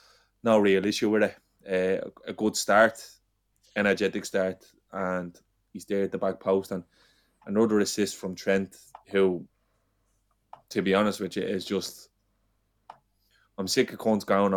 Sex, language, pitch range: male, English, 95-105 Hz